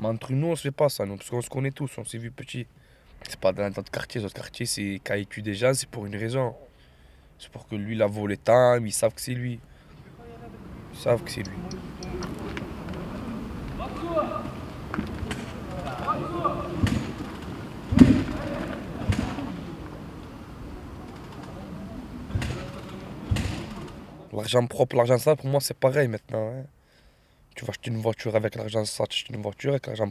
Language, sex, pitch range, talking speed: French, male, 100-125 Hz, 155 wpm